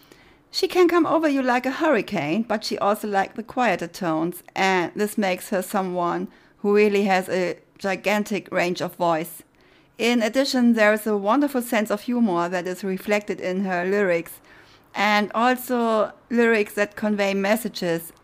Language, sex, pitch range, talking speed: English, female, 175-215 Hz, 160 wpm